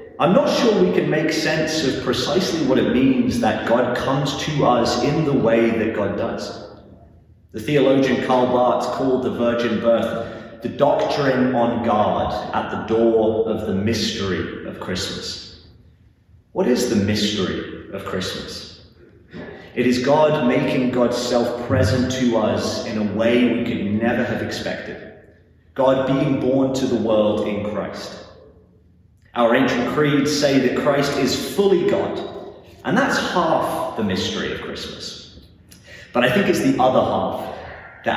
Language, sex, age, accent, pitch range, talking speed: English, male, 30-49, British, 110-135 Hz, 155 wpm